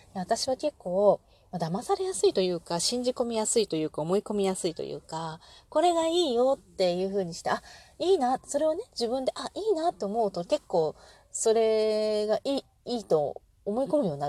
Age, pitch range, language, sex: 30-49, 165-235 Hz, Japanese, female